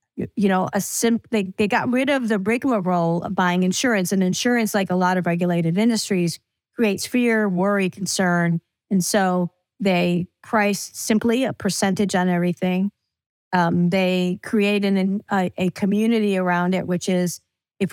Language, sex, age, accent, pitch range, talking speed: English, female, 50-69, American, 180-225 Hz, 160 wpm